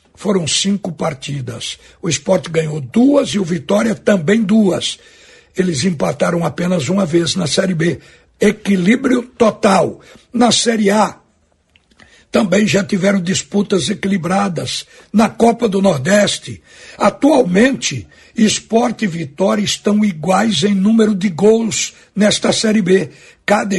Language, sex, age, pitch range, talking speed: Portuguese, male, 60-79, 175-215 Hz, 120 wpm